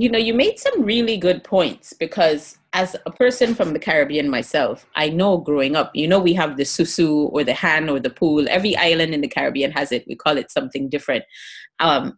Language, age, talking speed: English, 30-49, 220 wpm